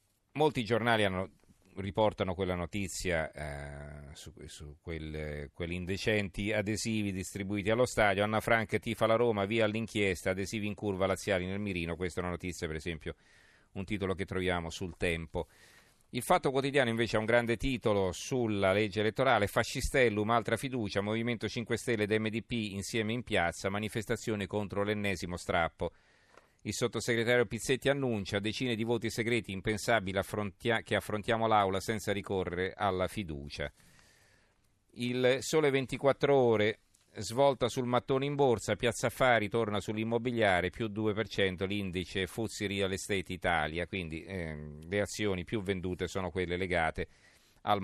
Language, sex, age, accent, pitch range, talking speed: Italian, male, 40-59, native, 95-115 Hz, 140 wpm